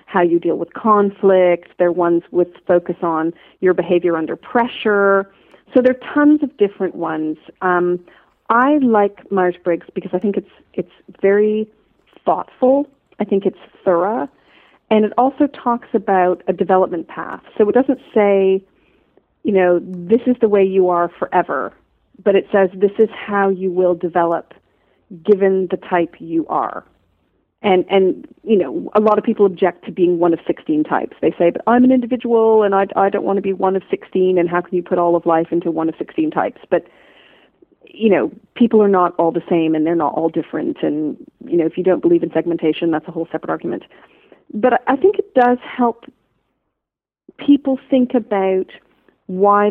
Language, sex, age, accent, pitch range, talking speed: English, female, 40-59, American, 175-225 Hz, 185 wpm